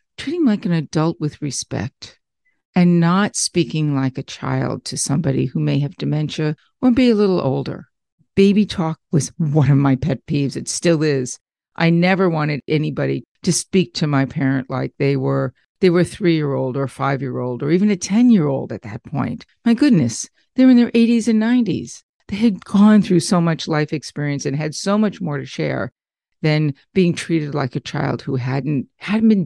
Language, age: English, 50-69